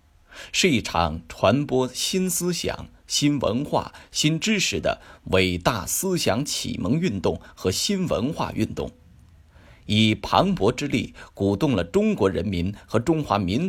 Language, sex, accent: Chinese, male, native